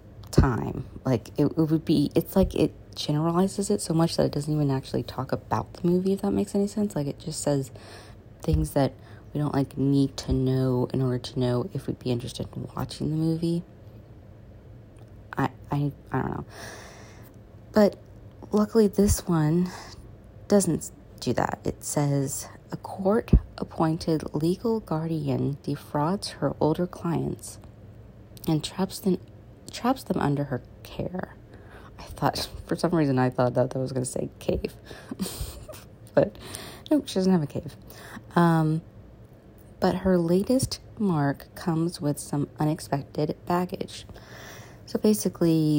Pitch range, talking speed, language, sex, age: 110-165 Hz, 150 wpm, English, female, 30-49